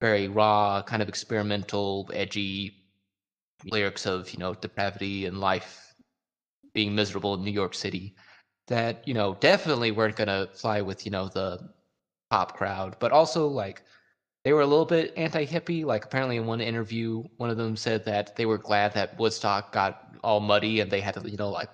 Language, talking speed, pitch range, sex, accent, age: English, 185 wpm, 105-125 Hz, male, American, 20-39